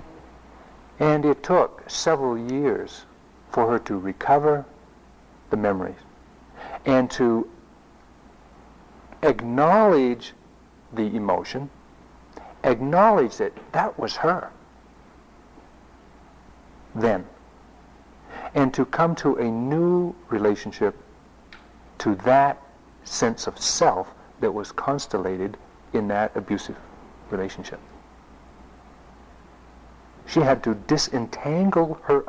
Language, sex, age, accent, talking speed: English, male, 60-79, American, 85 wpm